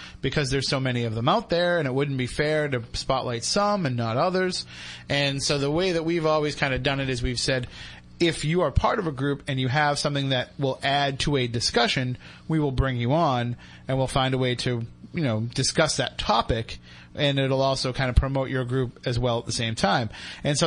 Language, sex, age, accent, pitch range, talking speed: English, male, 30-49, American, 125-155 Hz, 240 wpm